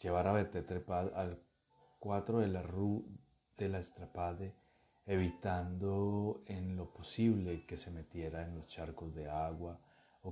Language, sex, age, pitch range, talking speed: Spanish, male, 30-49, 85-95 Hz, 145 wpm